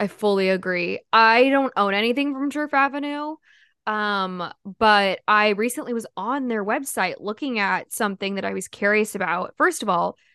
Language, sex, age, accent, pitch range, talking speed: English, female, 10-29, American, 195-245 Hz, 170 wpm